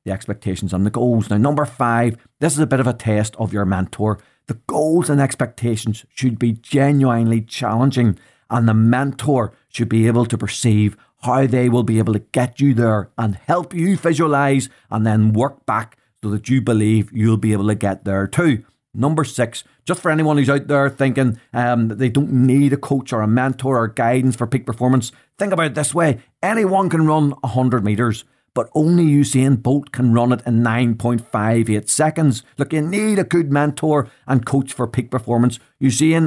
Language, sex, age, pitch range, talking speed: English, male, 40-59, 115-140 Hz, 195 wpm